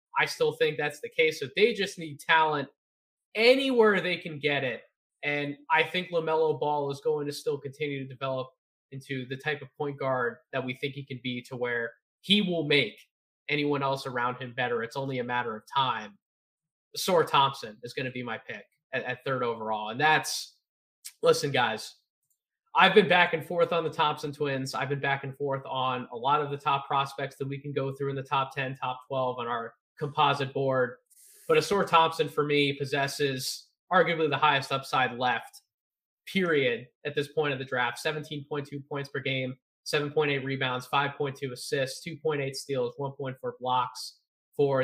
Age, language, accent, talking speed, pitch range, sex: 20-39, English, American, 185 wpm, 130-155 Hz, male